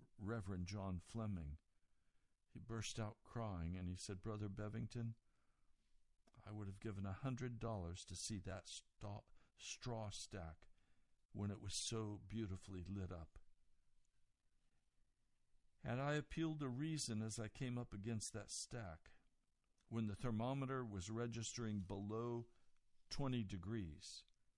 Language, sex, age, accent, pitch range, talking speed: English, male, 60-79, American, 100-125 Hz, 125 wpm